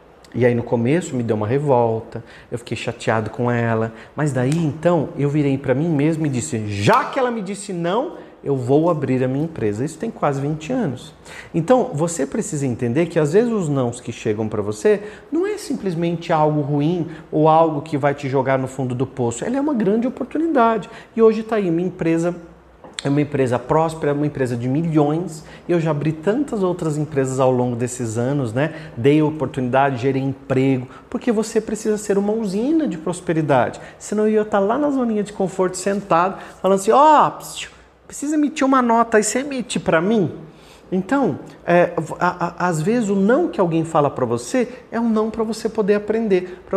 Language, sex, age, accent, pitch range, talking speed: Portuguese, male, 40-59, Brazilian, 140-205 Hz, 195 wpm